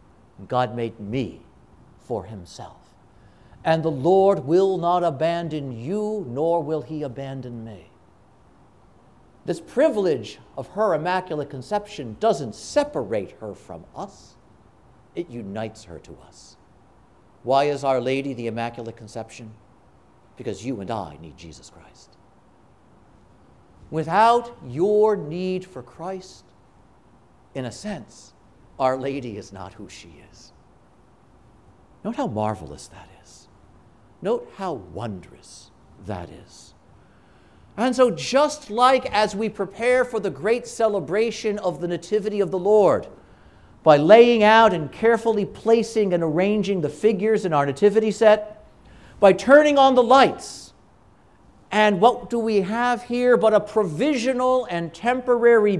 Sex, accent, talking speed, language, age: male, American, 130 wpm, English, 60-79